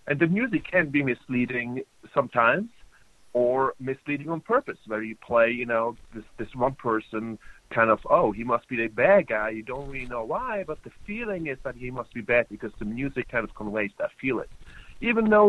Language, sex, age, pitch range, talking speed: English, male, 40-59, 115-145 Hz, 210 wpm